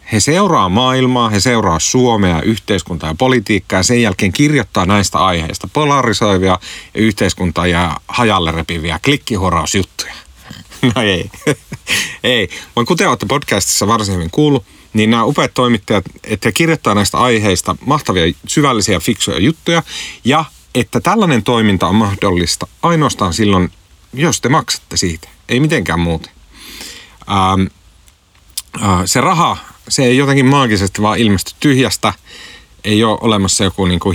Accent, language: native, Finnish